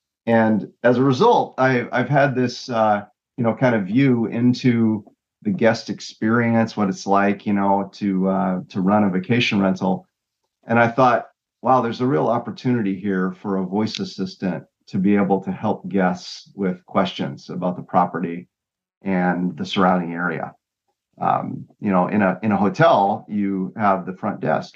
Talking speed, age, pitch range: 170 wpm, 40-59, 95-120 Hz